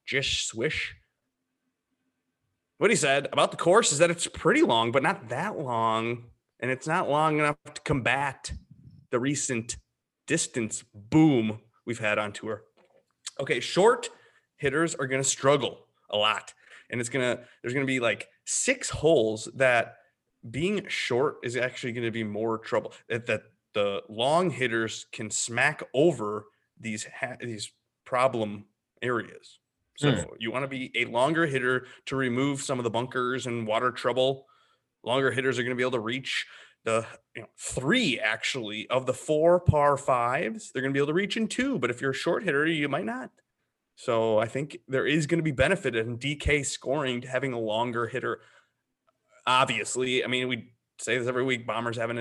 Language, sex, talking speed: English, male, 175 wpm